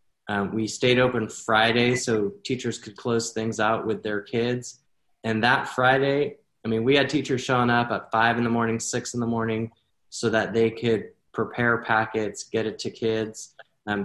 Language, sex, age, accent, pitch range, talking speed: English, male, 20-39, American, 110-125 Hz, 190 wpm